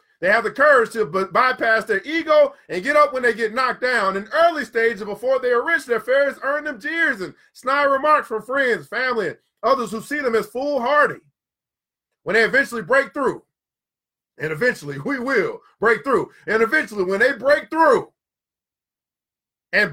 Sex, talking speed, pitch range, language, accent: male, 180 wpm, 240-305 Hz, English, American